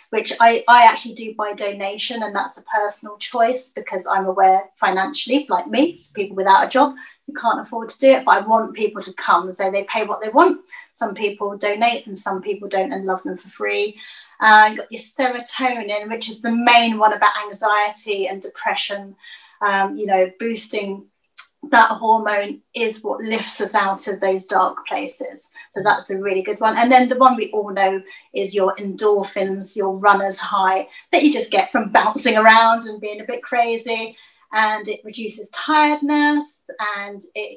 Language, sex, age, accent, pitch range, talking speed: English, female, 30-49, British, 205-245 Hz, 190 wpm